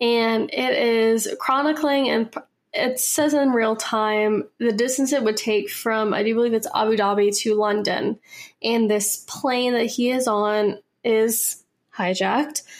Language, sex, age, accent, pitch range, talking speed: English, female, 10-29, American, 210-245 Hz, 155 wpm